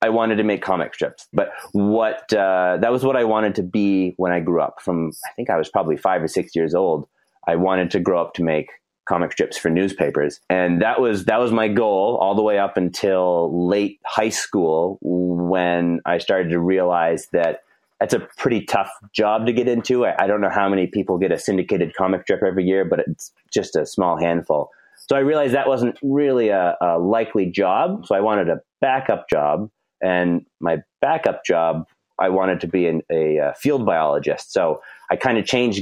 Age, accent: 30-49, American